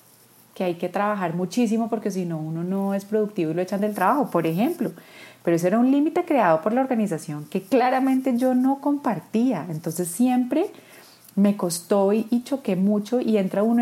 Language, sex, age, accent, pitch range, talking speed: Spanish, female, 30-49, Colombian, 175-230 Hz, 185 wpm